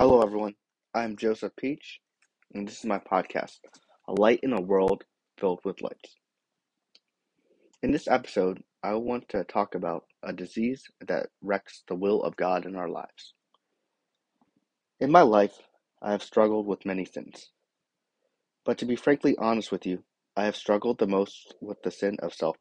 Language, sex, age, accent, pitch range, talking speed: English, male, 20-39, American, 95-120 Hz, 165 wpm